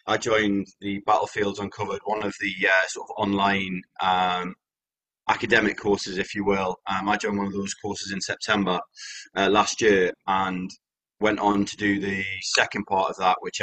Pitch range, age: 95-105 Hz, 20-39